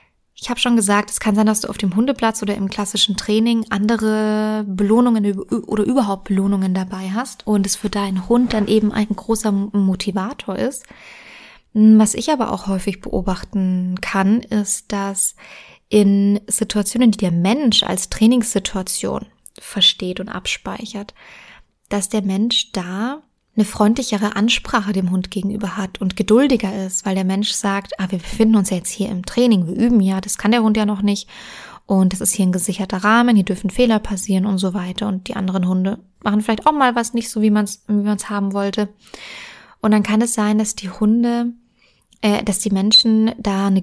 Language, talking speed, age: German, 185 wpm, 20-39